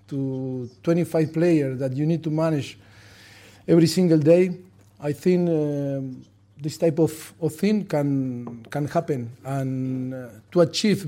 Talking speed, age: 135 wpm, 40-59